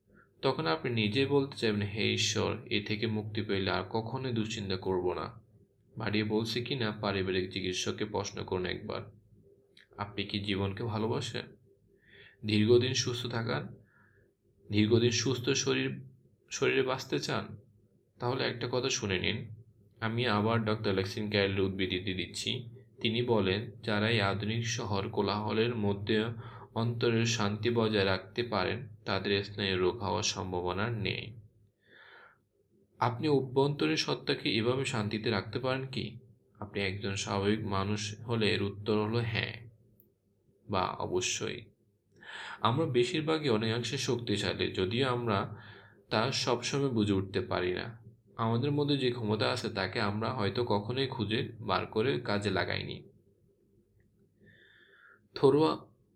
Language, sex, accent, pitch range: Bengali, male, native, 100-120 Hz